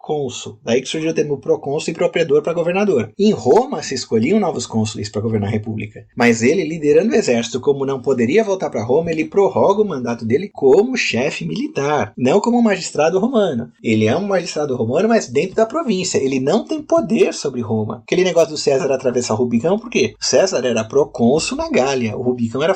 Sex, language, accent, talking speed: male, Portuguese, Brazilian, 205 wpm